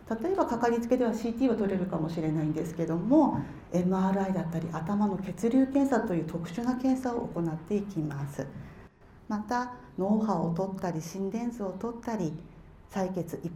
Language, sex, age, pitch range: Japanese, female, 40-59, 170-240 Hz